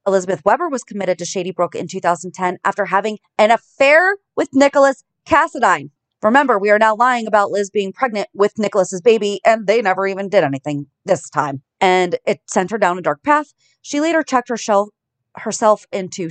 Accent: American